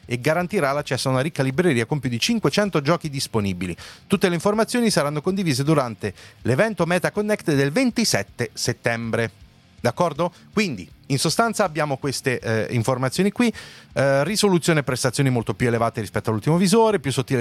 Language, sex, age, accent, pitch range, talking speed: Italian, male, 30-49, native, 110-170 Hz, 160 wpm